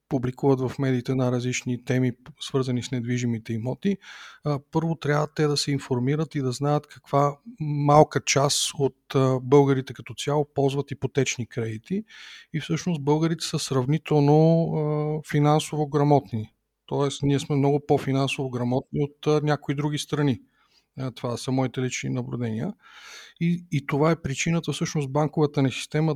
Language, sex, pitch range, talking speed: Bulgarian, male, 125-150 Hz, 140 wpm